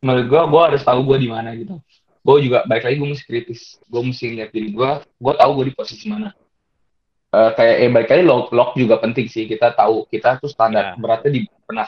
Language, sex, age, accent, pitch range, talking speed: Indonesian, male, 20-39, native, 110-140 Hz, 215 wpm